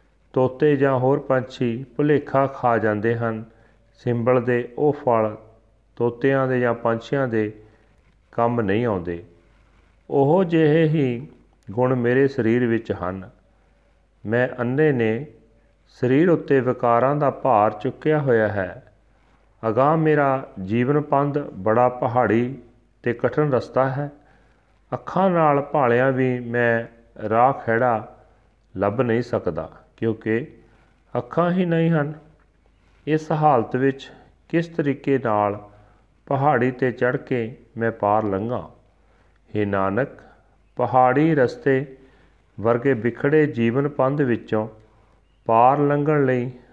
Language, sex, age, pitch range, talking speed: Punjabi, male, 40-59, 110-135 Hz, 115 wpm